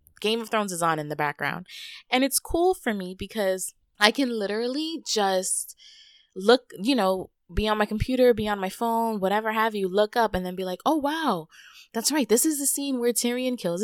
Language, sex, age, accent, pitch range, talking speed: English, female, 20-39, American, 170-230 Hz, 215 wpm